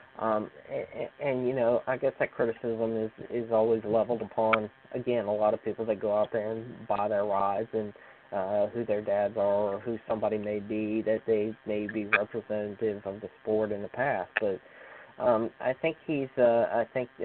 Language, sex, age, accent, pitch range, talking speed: English, male, 20-39, American, 110-120 Hz, 190 wpm